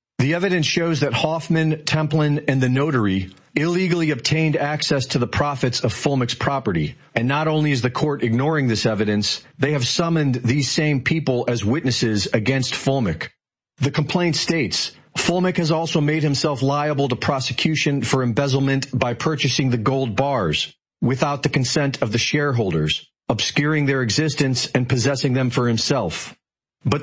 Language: English